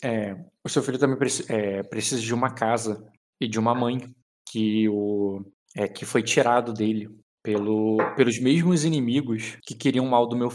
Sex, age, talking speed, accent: male, 20-39, 175 wpm, Brazilian